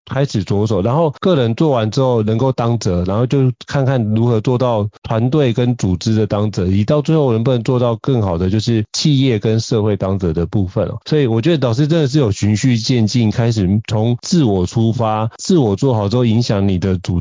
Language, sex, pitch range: Chinese, male, 105-125 Hz